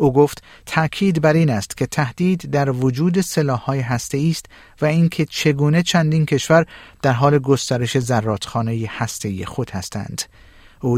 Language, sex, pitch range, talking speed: Persian, male, 125-155 Hz, 140 wpm